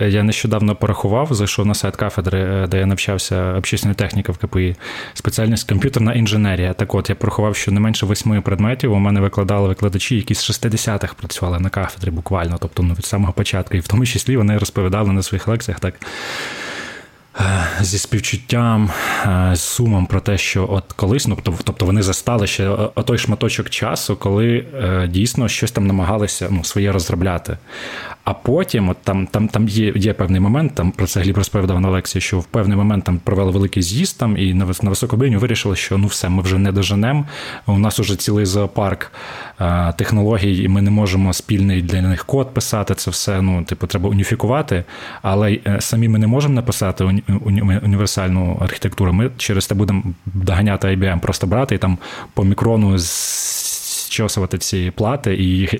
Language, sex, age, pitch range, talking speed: Ukrainian, male, 20-39, 95-110 Hz, 180 wpm